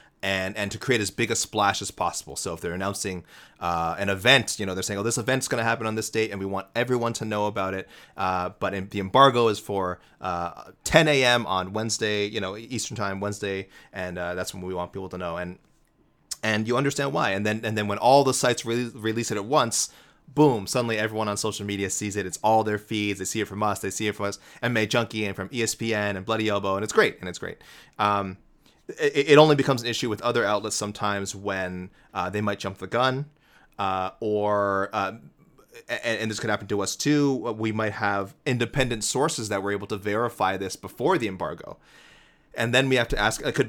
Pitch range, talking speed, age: 95-115 Hz, 230 wpm, 30-49